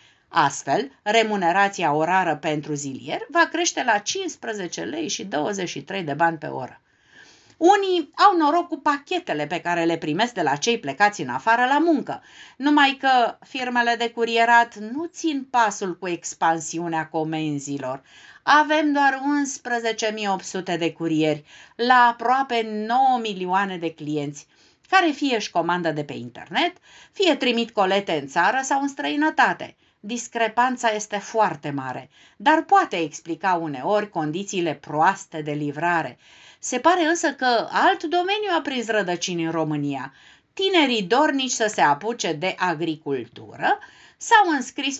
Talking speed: 135 wpm